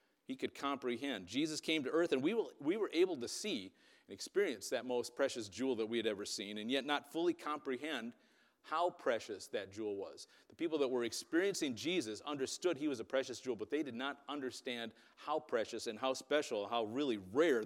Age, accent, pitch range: 40-59, American, 125-180 Hz